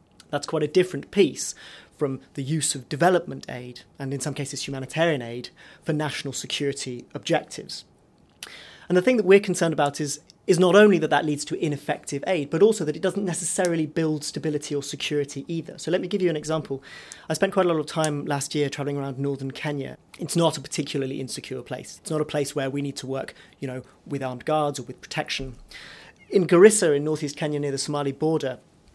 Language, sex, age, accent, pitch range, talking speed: English, male, 30-49, British, 135-155 Hz, 210 wpm